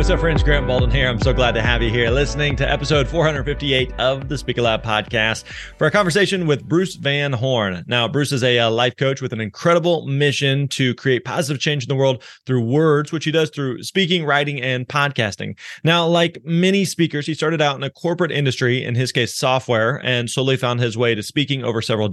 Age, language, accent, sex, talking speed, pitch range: 30-49, English, American, male, 215 wpm, 125-155 Hz